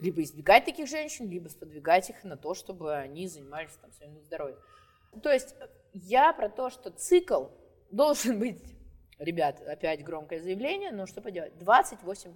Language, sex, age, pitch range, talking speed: Russian, female, 20-39, 160-250 Hz, 150 wpm